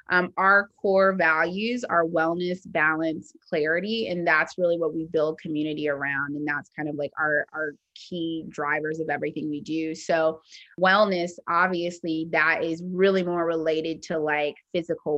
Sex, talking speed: female, 160 wpm